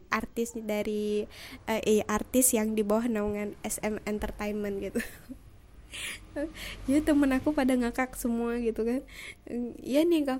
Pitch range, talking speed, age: 205-230 Hz, 145 wpm, 20-39